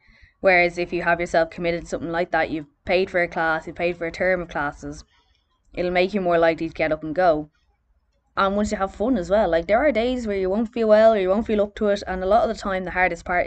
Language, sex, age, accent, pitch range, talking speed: English, female, 20-39, Irish, 160-185 Hz, 285 wpm